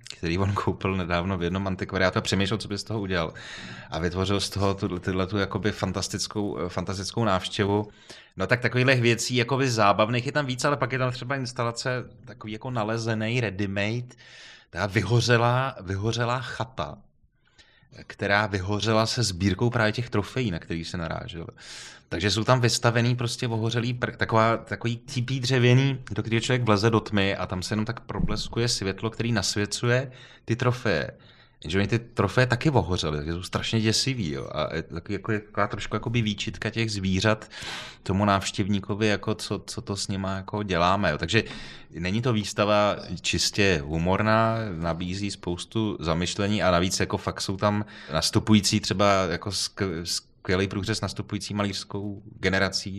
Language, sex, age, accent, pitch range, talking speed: Czech, male, 30-49, native, 95-115 Hz, 155 wpm